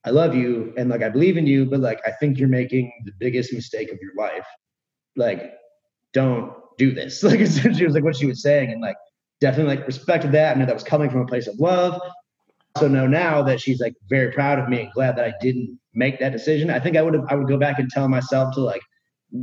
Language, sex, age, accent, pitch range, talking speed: English, male, 30-49, American, 125-155 Hz, 250 wpm